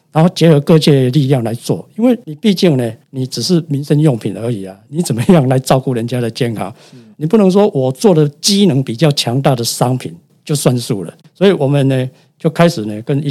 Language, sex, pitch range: Chinese, male, 125-165 Hz